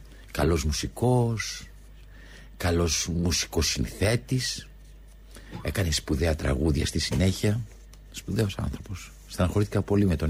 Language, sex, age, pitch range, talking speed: Greek, male, 60-79, 75-100 Hz, 85 wpm